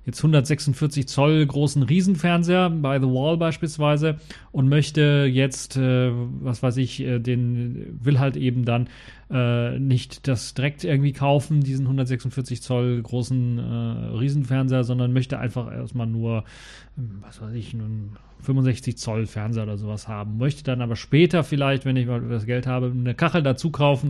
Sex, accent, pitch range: male, German, 125-145 Hz